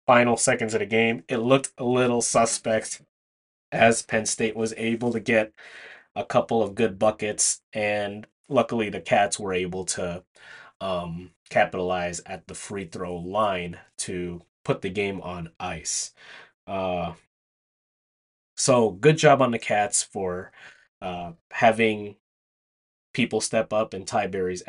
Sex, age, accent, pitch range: male, 20-39, American, 90-120 Hz